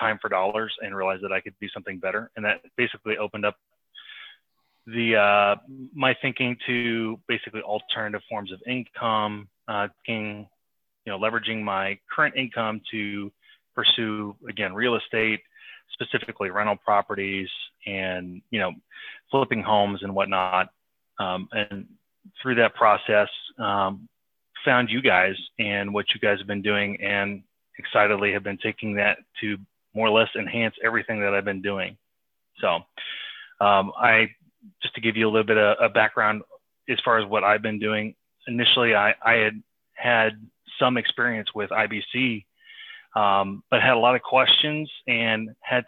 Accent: American